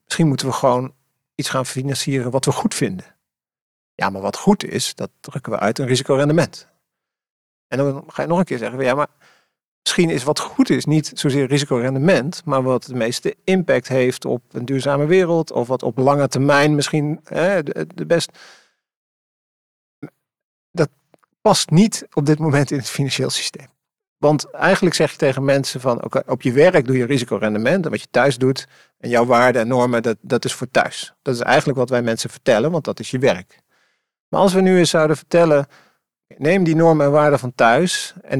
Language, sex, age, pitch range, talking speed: Dutch, male, 50-69, 130-160 Hz, 195 wpm